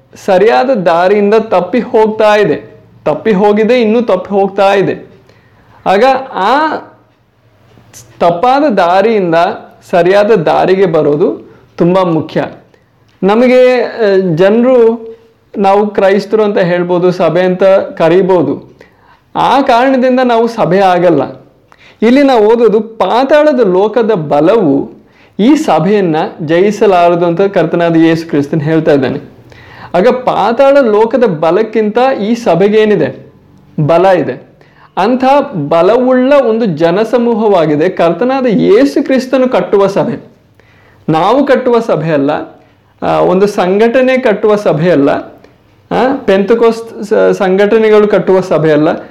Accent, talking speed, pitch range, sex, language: native, 95 wpm, 175-235 Hz, male, Kannada